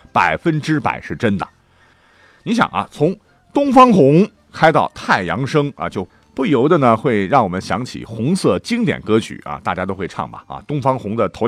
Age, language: 50-69, Chinese